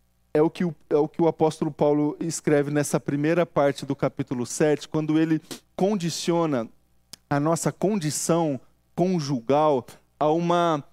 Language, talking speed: Portuguese, 145 wpm